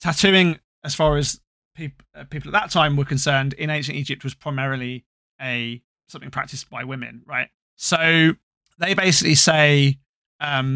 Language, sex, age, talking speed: English, male, 20-39, 150 wpm